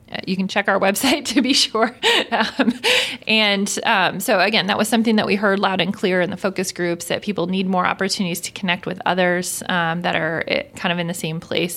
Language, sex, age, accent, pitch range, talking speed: English, female, 20-39, American, 175-205 Hz, 225 wpm